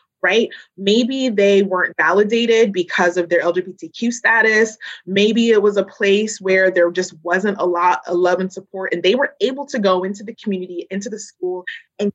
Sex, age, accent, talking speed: female, 20-39, American, 190 wpm